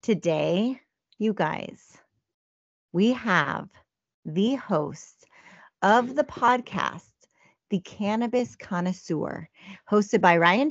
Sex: female